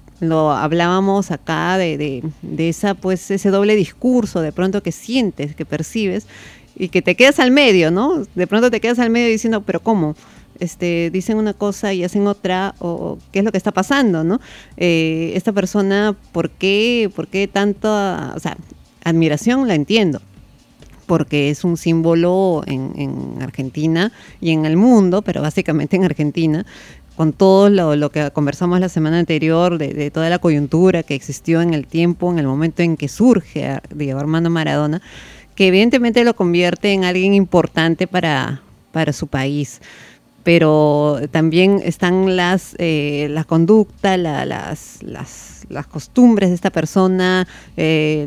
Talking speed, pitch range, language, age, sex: 155 wpm, 155-195 Hz, Spanish, 30-49, female